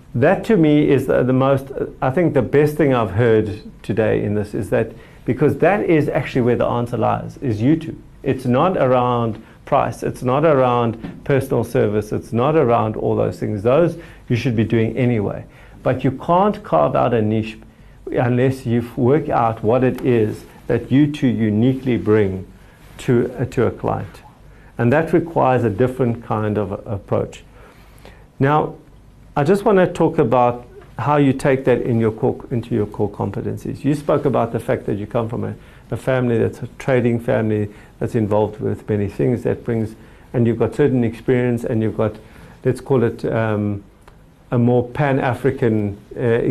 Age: 50-69